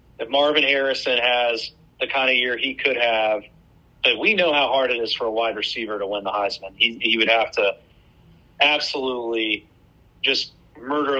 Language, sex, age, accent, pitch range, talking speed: English, male, 40-59, American, 115-140 Hz, 180 wpm